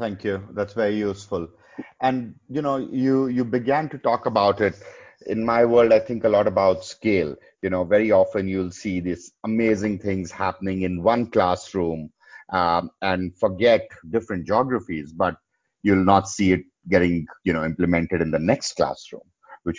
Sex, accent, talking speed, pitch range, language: male, Indian, 170 wpm, 85-110 Hz, English